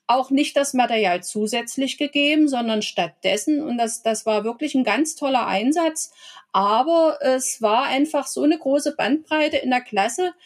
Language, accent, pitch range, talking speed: German, German, 235-300 Hz, 160 wpm